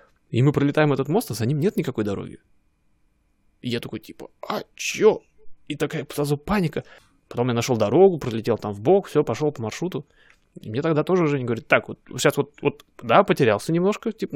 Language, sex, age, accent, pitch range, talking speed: Russian, male, 20-39, native, 115-155 Hz, 200 wpm